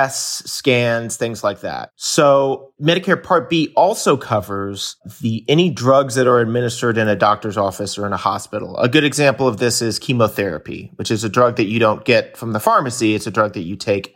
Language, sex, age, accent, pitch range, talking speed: English, male, 30-49, American, 105-135 Hz, 205 wpm